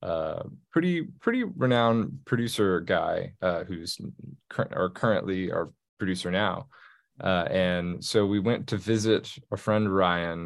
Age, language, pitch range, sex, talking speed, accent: 20-39, English, 95-115 Hz, male, 130 wpm, American